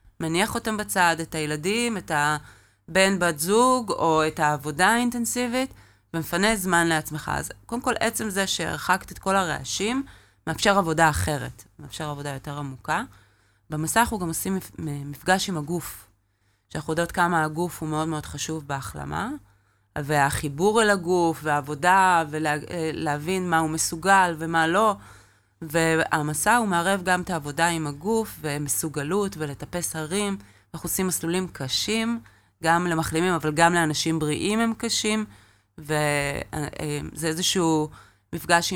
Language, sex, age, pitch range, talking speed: Hebrew, female, 30-49, 150-190 Hz, 130 wpm